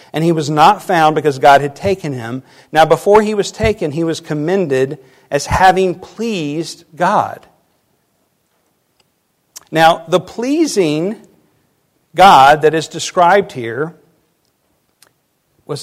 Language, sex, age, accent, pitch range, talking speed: English, male, 50-69, American, 150-185 Hz, 120 wpm